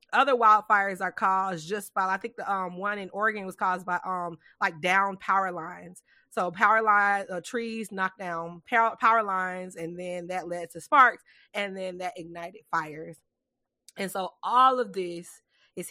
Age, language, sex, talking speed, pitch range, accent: 20-39, English, female, 175 wpm, 170-205 Hz, American